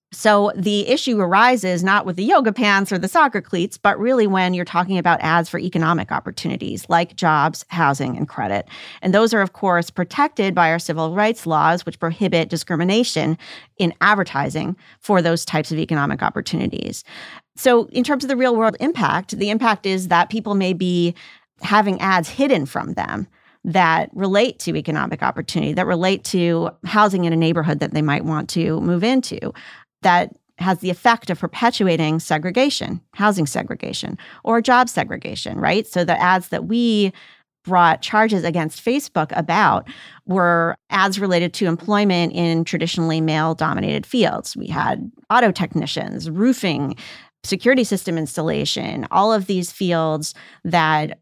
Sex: female